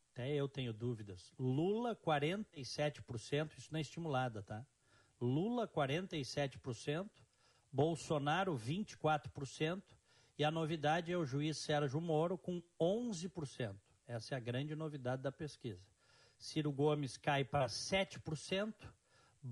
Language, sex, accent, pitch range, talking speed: Portuguese, male, Brazilian, 120-155 Hz, 110 wpm